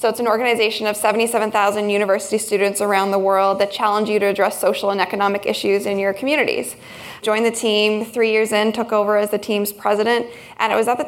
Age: 20-39